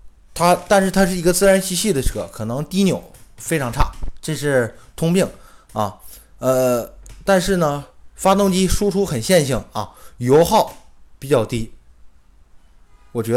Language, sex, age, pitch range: Chinese, male, 20-39, 110-175 Hz